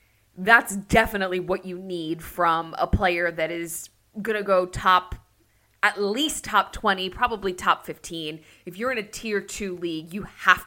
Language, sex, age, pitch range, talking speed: English, female, 20-39, 165-210 Hz, 170 wpm